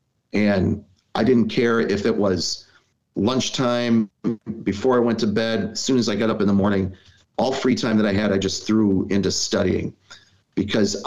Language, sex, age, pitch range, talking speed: English, male, 40-59, 100-115 Hz, 185 wpm